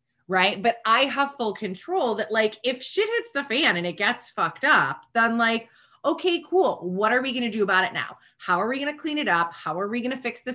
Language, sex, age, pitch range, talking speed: English, female, 20-39, 165-235 Hz, 260 wpm